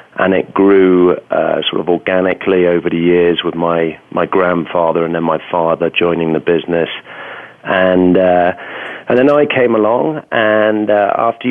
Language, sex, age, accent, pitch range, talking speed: English, male, 40-59, British, 85-100 Hz, 160 wpm